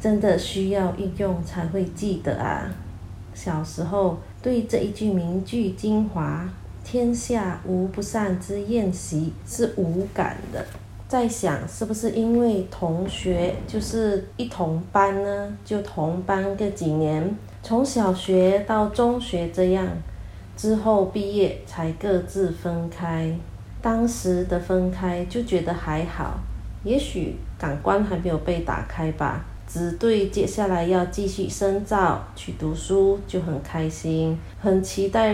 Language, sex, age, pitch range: Chinese, female, 30-49, 165-200 Hz